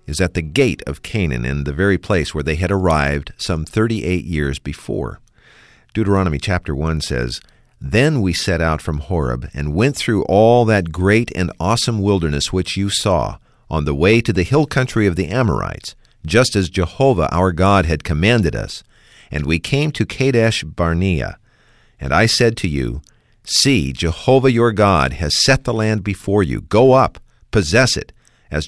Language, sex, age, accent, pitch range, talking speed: English, male, 50-69, American, 80-115 Hz, 175 wpm